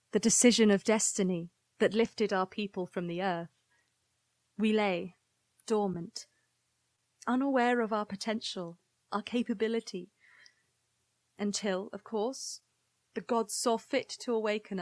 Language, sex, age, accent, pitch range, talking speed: English, female, 30-49, British, 195-240 Hz, 115 wpm